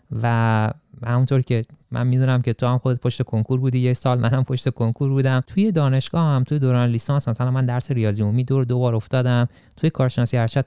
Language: Persian